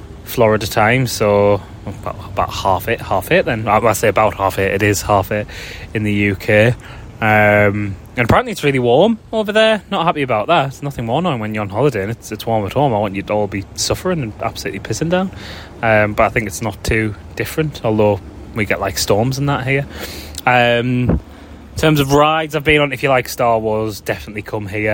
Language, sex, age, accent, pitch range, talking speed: English, male, 20-39, British, 95-115 Hz, 215 wpm